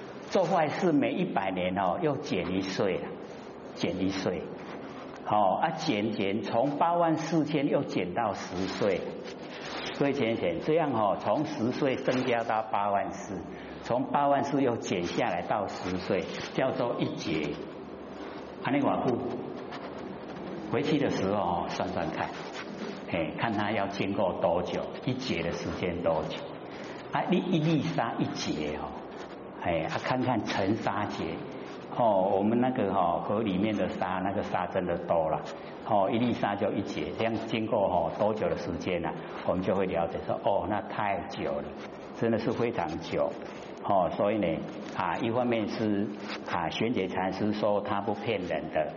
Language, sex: Chinese, male